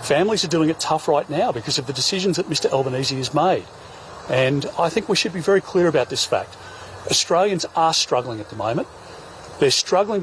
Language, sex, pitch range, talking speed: Arabic, male, 125-160 Hz, 205 wpm